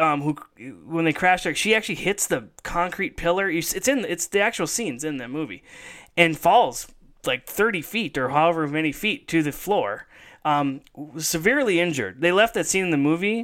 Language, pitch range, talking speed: English, 140-175 Hz, 195 wpm